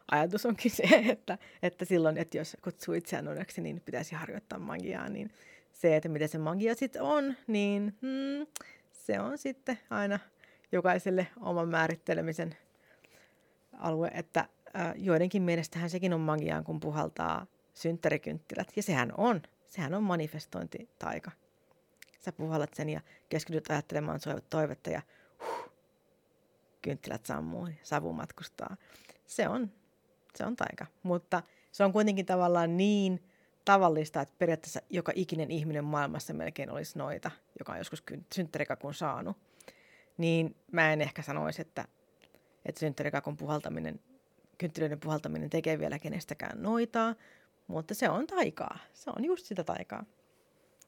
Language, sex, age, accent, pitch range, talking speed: Finnish, female, 30-49, native, 160-220 Hz, 130 wpm